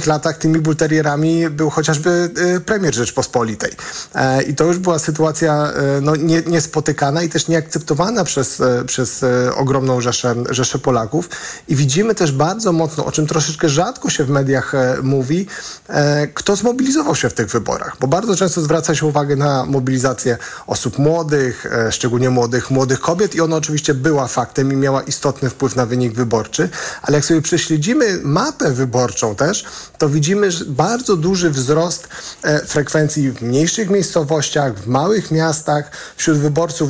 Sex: male